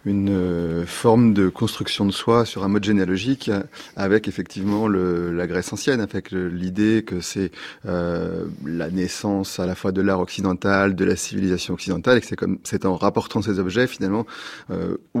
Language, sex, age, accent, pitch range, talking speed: French, male, 30-49, French, 95-115 Hz, 180 wpm